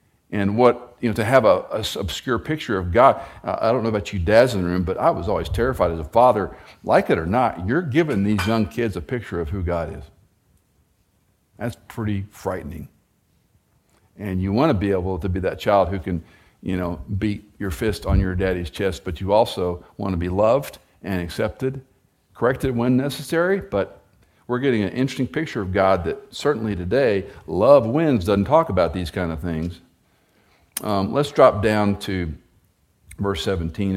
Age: 50-69